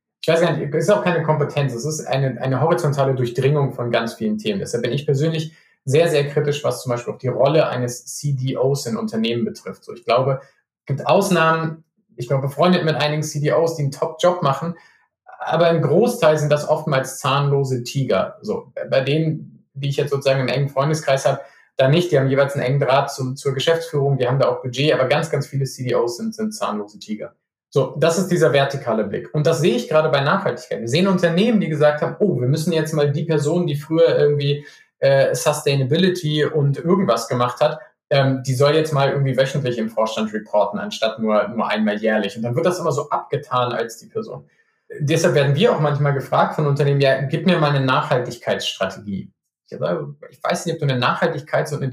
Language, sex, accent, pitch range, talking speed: German, male, German, 135-160 Hz, 210 wpm